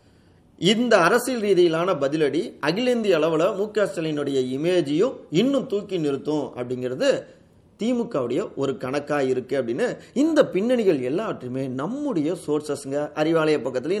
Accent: native